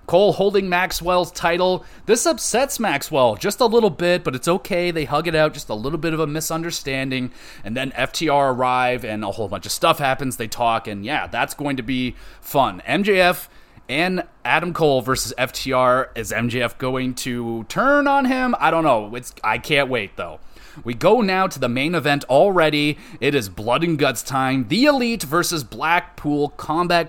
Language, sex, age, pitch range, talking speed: English, male, 30-49, 120-165 Hz, 190 wpm